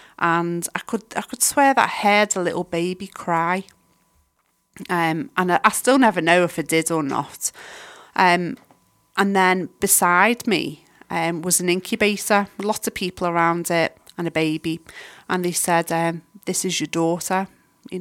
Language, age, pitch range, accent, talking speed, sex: English, 30-49, 165-180 Hz, British, 175 wpm, female